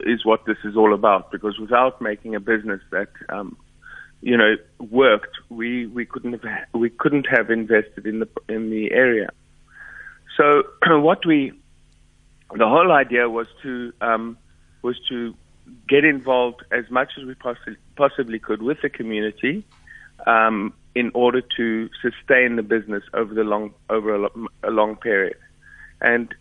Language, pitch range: English, 110-125 Hz